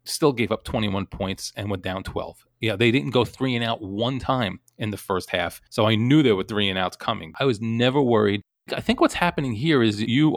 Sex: male